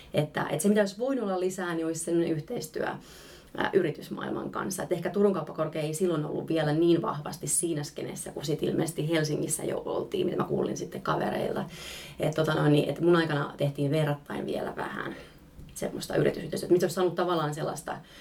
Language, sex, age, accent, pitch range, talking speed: Finnish, female, 30-49, native, 155-185 Hz, 170 wpm